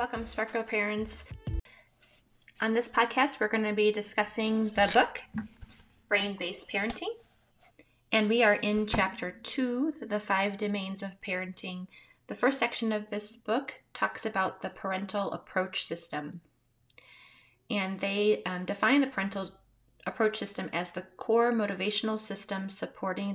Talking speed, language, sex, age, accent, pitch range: 135 wpm, English, female, 20-39, American, 170-215 Hz